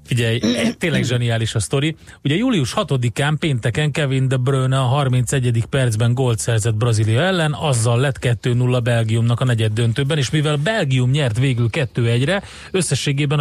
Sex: male